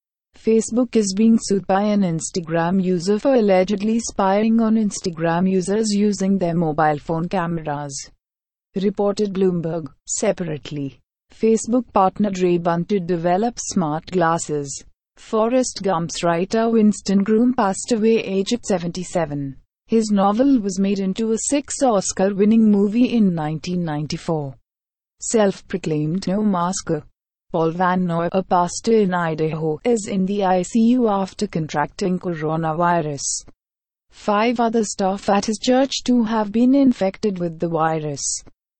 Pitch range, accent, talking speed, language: 175-220 Hz, Indian, 120 wpm, English